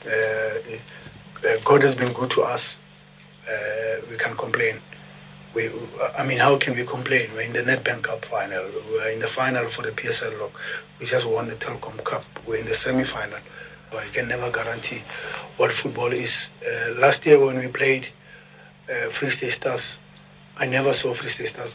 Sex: male